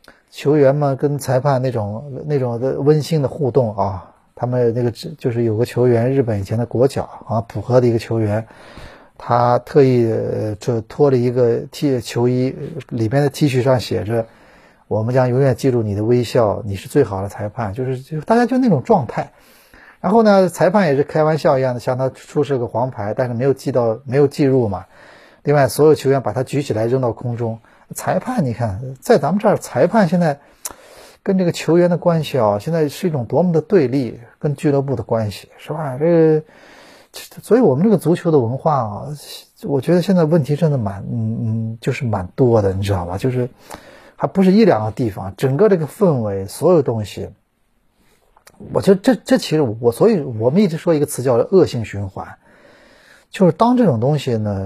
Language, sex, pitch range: Chinese, male, 115-155 Hz